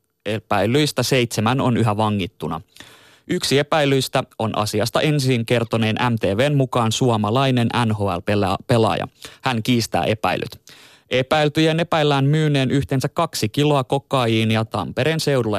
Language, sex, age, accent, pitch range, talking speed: Finnish, male, 20-39, native, 110-140 Hz, 105 wpm